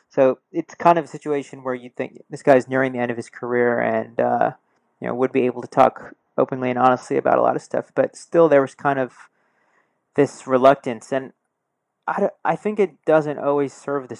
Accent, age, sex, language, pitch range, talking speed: American, 30-49, male, English, 125-140 Hz, 220 wpm